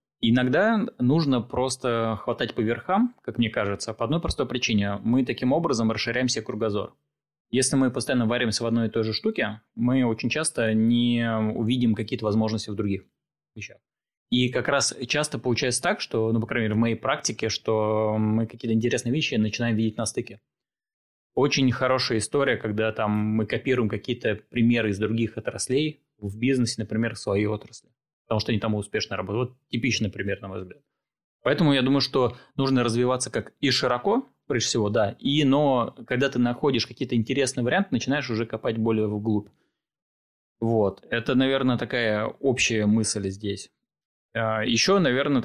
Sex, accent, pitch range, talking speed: male, native, 110-130 Hz, 160 wpm